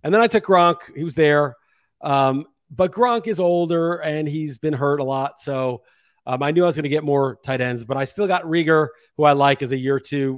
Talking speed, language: 250 wpm, English